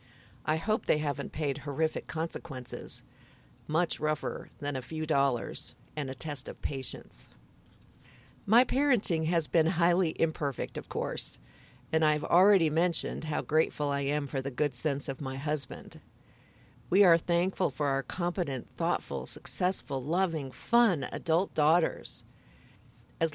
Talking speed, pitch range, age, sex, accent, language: 140 wpm, 140-180 Hz, 50-69, female, American, English